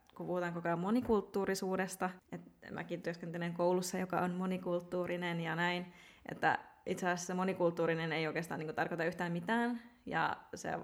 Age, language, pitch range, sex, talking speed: 20-39, Finnish, 170-185 Hz, female, 150 wpm